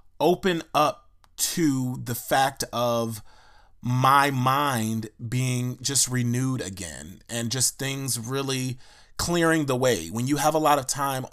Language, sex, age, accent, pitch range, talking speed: English, male, 30-49, American, 115-145 Hz, 140 wpm